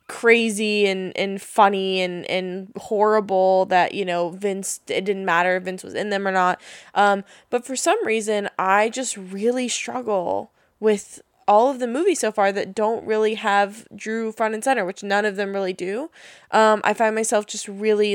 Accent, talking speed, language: American, 190 wpm, English